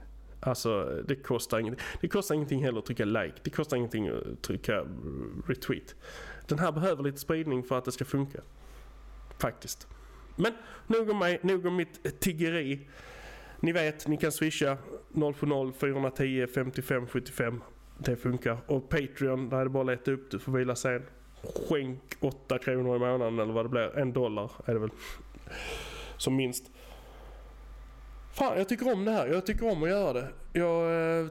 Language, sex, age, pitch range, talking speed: English, male, 20-39, 125-165 Hz, 165 wpm